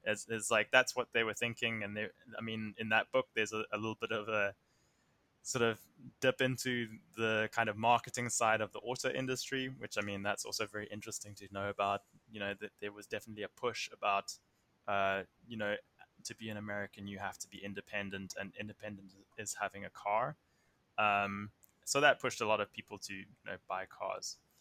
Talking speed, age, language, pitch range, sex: 210 wpm, 10-29, English, 105-125 Hz, male